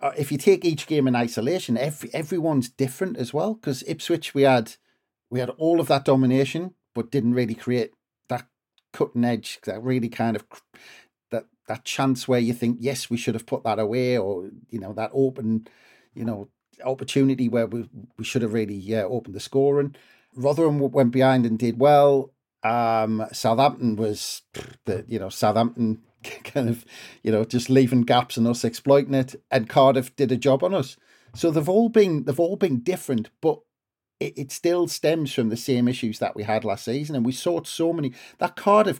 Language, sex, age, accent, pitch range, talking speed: English, male, 40-59, British, 115-145 Hz, 190 wpm